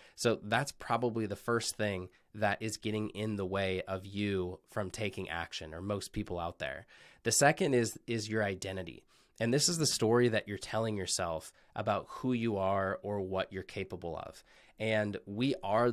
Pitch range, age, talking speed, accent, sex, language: 100-115 Hz, 20-39, 185 wpm, American, male, English